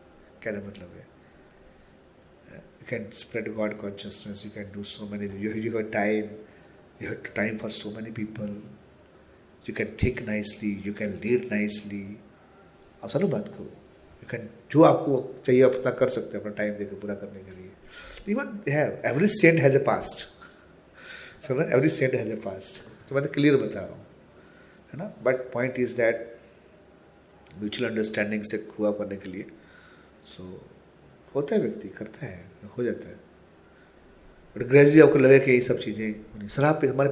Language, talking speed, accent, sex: Hindi, 155 wpm, native, male